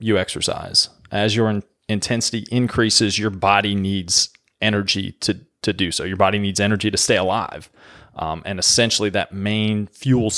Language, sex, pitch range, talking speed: English, male, 100-115 Hz, 155 wpm